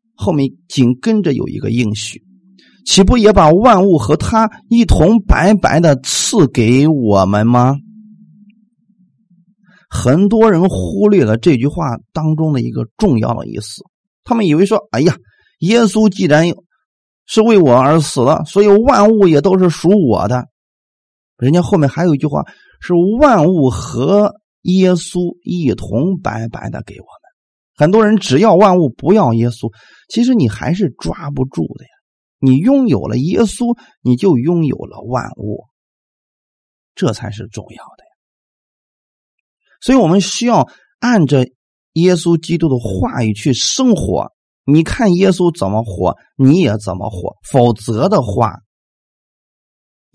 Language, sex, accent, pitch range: Chinese, male, native, 120-200 Hz